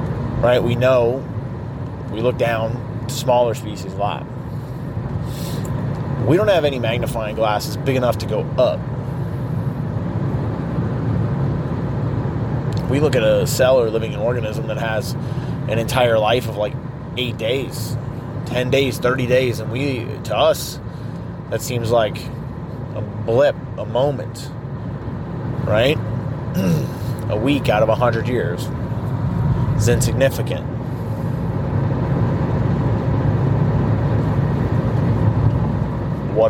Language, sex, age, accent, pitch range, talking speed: English, male, 30-49, American, 120-135 Hz, 105 wpm